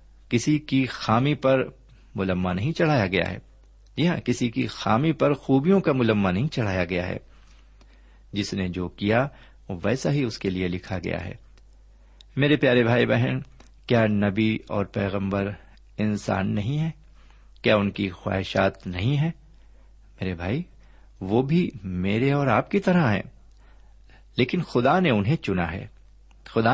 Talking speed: 155 wpm